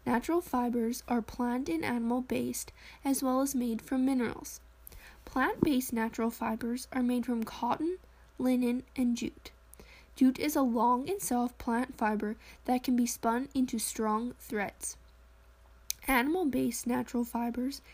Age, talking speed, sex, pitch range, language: 10-29, 135 wpm, female, 235-270 Hz, English